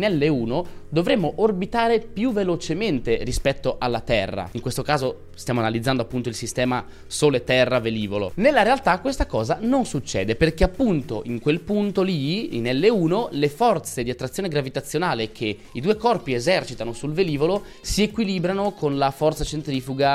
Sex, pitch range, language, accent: male, 125-175 Hz, Italian, native